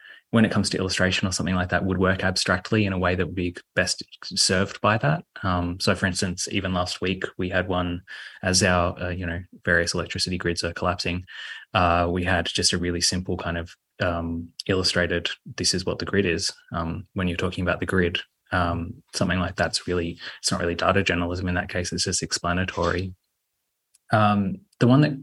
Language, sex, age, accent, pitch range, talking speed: English, male, 20-39, Australian, 90-95 Hz, 200 wpm